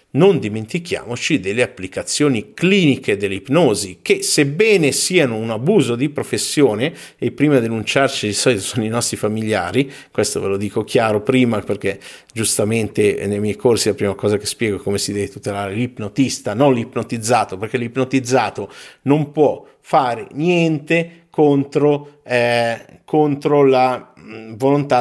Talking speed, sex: 140 wpm, male